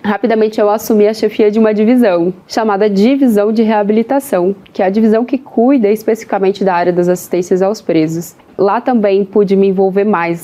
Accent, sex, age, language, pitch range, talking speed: Brazilian, female, 20-39, Portuguese, 185-225 Hz, 180 wpm